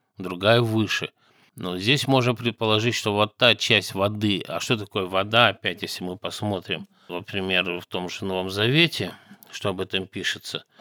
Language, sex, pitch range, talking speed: Russian, male, 95-120 Hz, 160 wpm